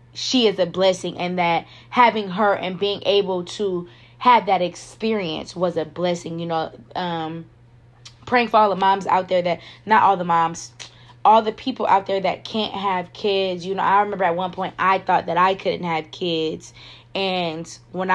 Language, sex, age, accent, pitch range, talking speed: English, female, 20-39, American, 175-220 Hz, 190 wpm